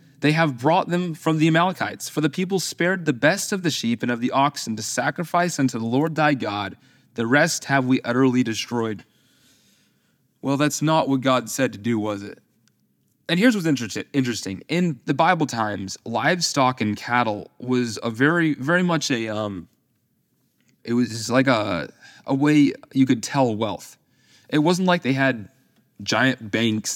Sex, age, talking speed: male, 20-39, 175 wpm